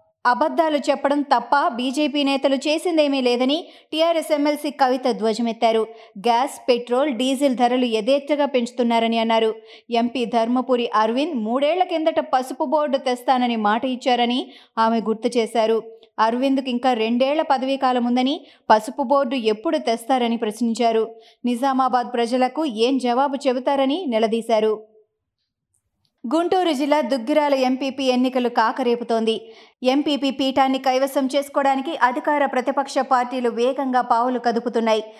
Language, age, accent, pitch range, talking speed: Telugu, 20-39, native, 235-280 Hz, 105 wpm